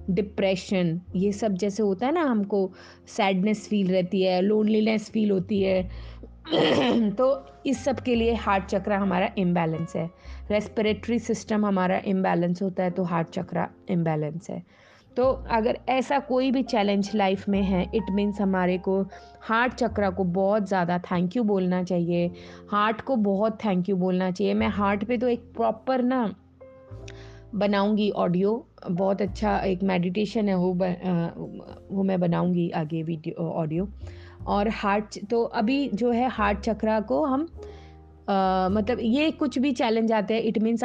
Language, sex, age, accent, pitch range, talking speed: Hindi, female, 20-39, native, 185-225 Hz, 155 wpm